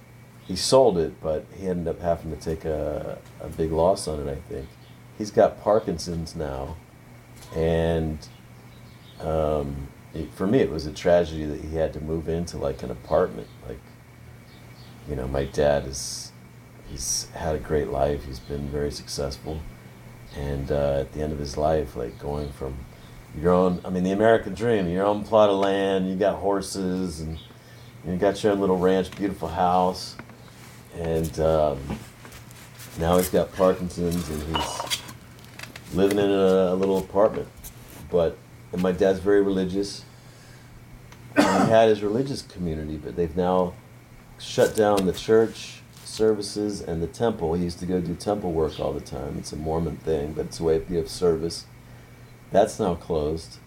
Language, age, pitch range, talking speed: English, 40-59, 75-100 Hz, 170 wpm